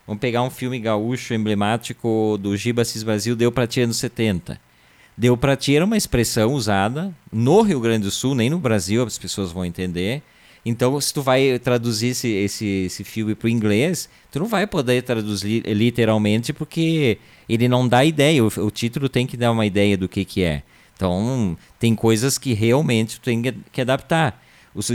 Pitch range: 110-135 Hz